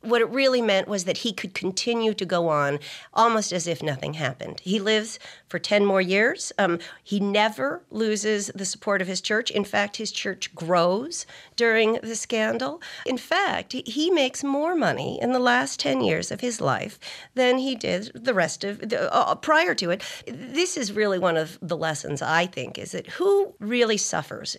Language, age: English, 40-59